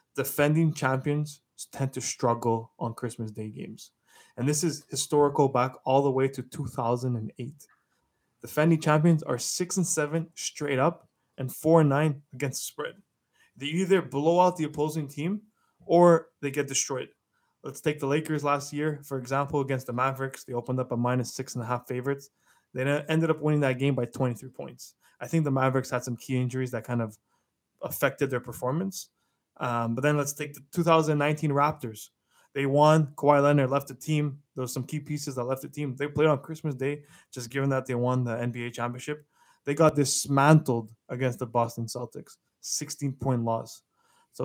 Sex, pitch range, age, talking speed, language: male, 125-150 Hz, 20-39, 175 wpm, English